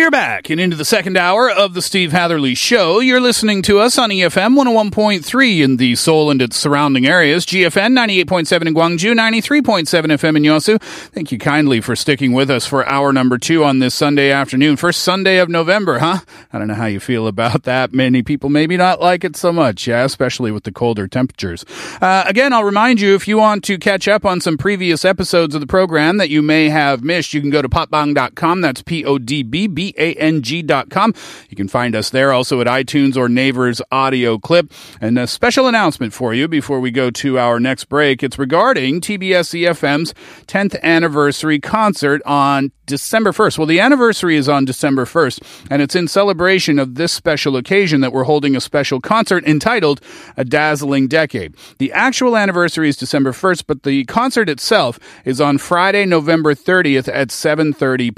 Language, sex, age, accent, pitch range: Korean, male, 40-59, American, 135-185 Hz